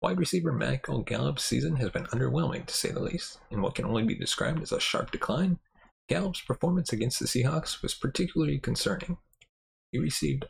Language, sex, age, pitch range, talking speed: English, male, 30-49, 125-175 Hz, 185 wpm